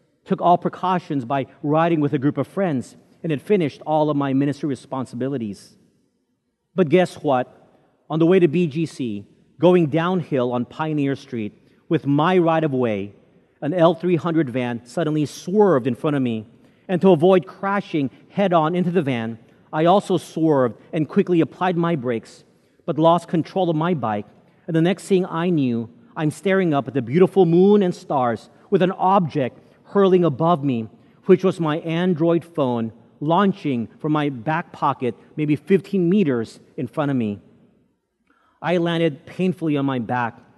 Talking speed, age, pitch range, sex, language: 160 wpm, 40-59, 130-175 Hz, male, English